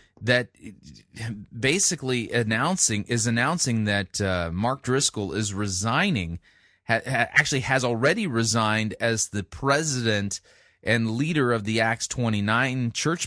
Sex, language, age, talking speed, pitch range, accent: male, English, 30-49, 120 wpm, 105-130 Hz, American